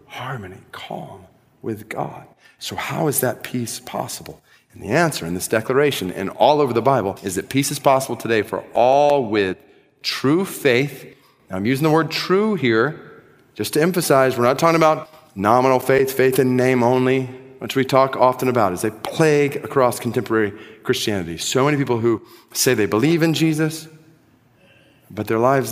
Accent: American